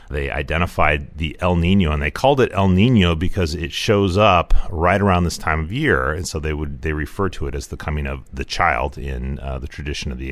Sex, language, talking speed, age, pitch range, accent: male, English, 240 wpm, 40-59, 75-100 Hz, American